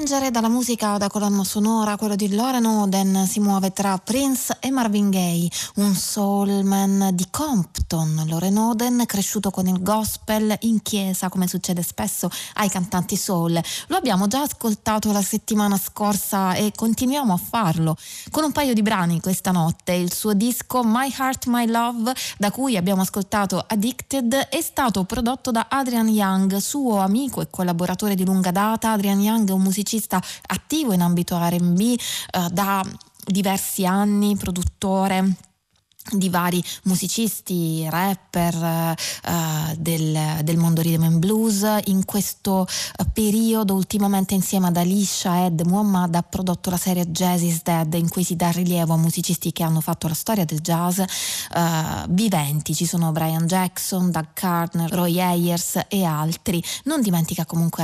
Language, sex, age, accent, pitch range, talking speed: Italian, female, 20-39, native, 175-215 Hz, 150 wpm